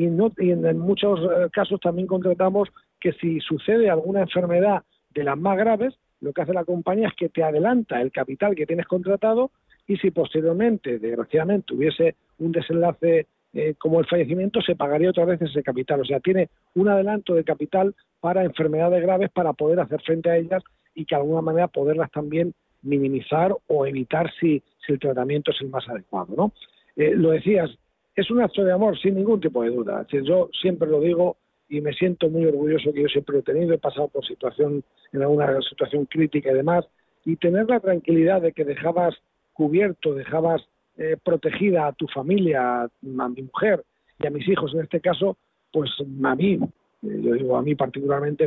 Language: Spanish